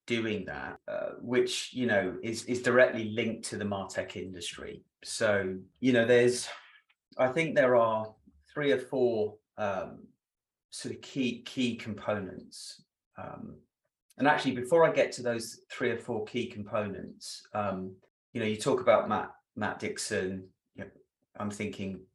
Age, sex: 30-49, male